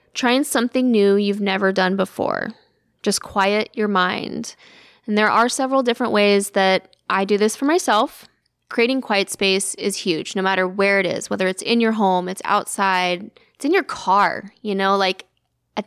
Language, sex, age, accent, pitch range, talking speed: English, female, 20-39, American, 195-235 Hz, 180 wpm